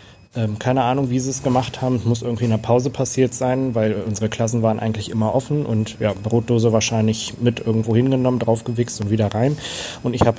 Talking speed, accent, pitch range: 210 wpm, German, 110-125 Hz